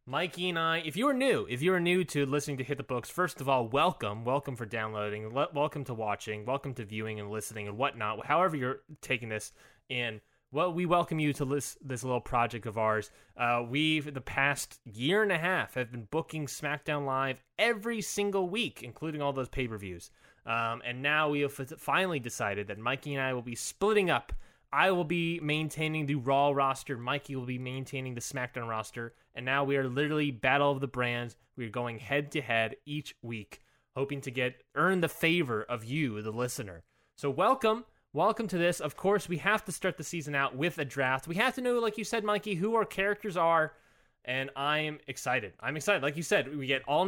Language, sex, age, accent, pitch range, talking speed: English, male, 20-39, American, 125-165 Hz, 215 wpm